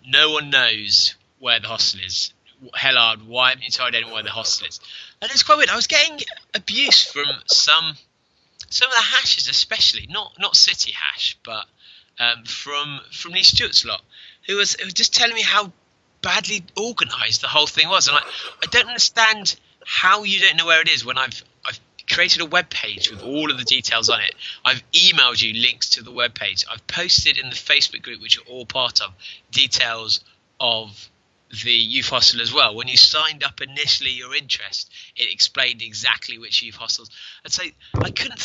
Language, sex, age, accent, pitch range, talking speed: English, male, 20-39, British, 115-170 Hz, 195 wpm